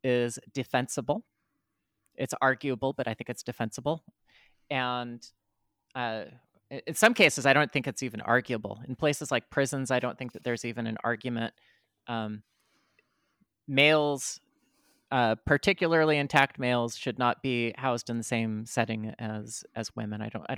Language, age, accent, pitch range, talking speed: English, 30-49, American, 110-135 Hz, 150 wpm